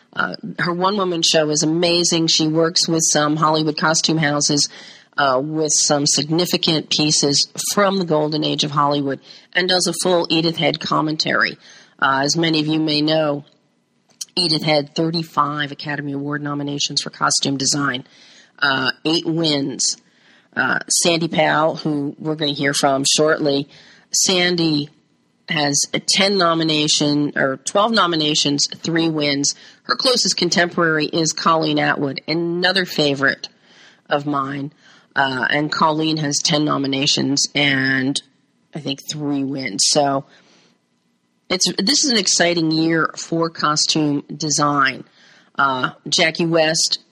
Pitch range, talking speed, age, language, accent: 145-165 Hz, 135 wpm, 40-59, English, American